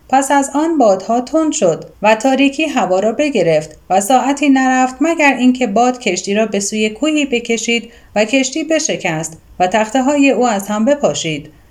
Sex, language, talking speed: female, Persian, 165 wpm